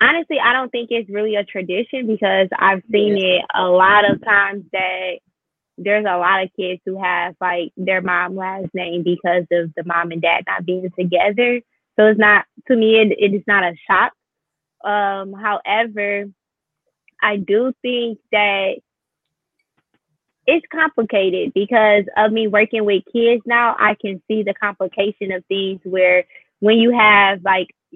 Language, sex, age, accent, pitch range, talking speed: English, female, 20-39, American, 185-215 Hz, 160 wpm